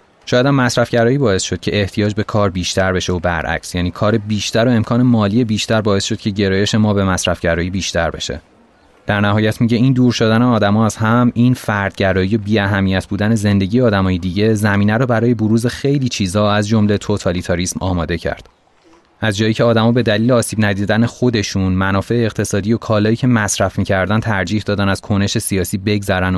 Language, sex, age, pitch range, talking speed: Persian, male, 30-49, 95-115 Hz, 180 wpm